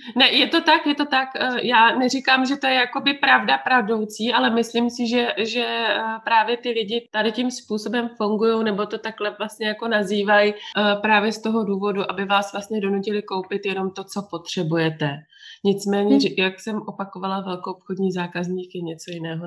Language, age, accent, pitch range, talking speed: Czech, 20-39, native, 180-210 Hz, 175 wpm